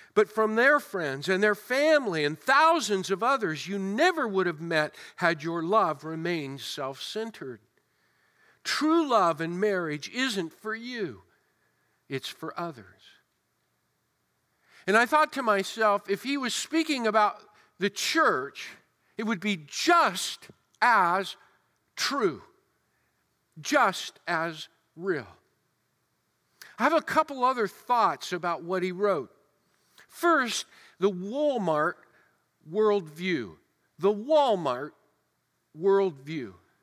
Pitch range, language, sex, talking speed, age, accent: 175-245 Hz, English, male, 110 wpm, 50-69, American